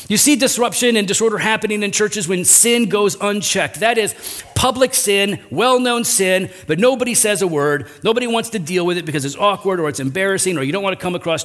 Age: 40-59